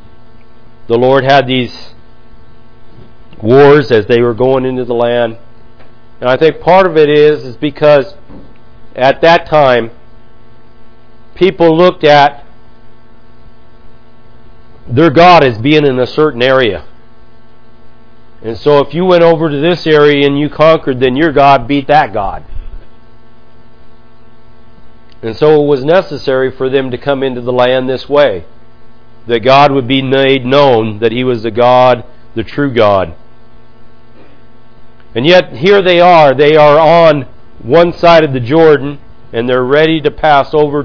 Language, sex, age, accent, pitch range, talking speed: English, male, 50-69, American, 110-150 Hz, 145 wpm